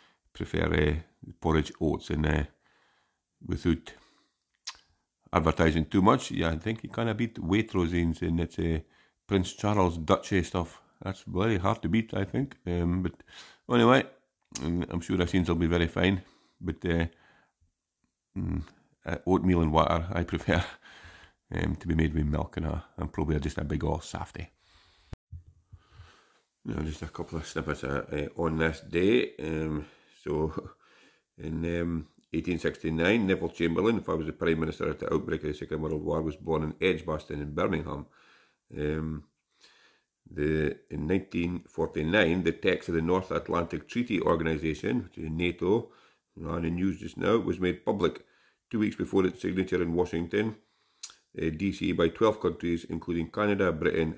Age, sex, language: 50-69, male, English